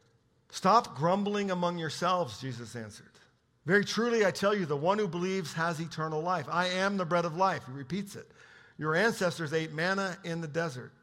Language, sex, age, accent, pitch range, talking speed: English, male, 50-69, American, 125-170 Hz, 185 wpm